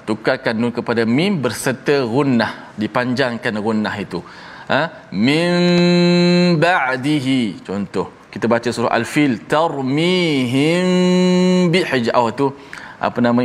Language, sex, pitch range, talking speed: Malayalam, male, 120-180 Hz, 95 wpm